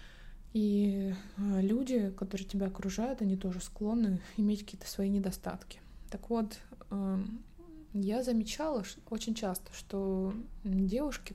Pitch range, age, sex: 190-225 Hz, 20-39, female